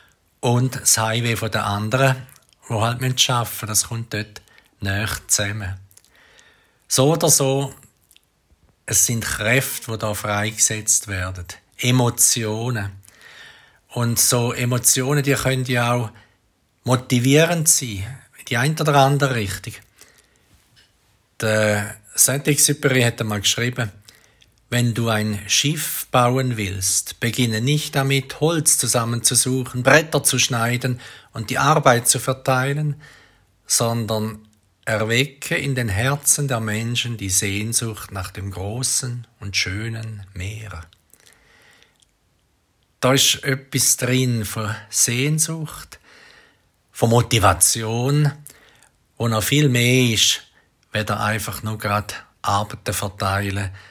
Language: German